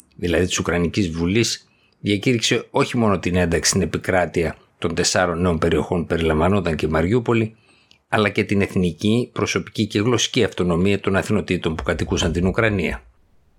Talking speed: 145 wpm